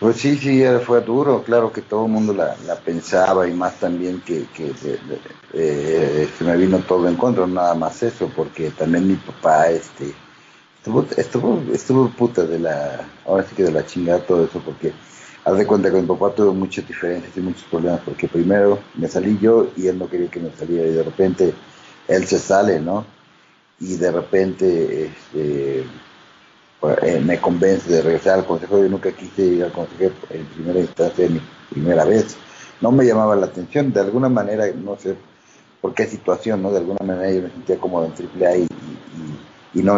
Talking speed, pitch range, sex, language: 195 wpm, 85-100 Hz, male, English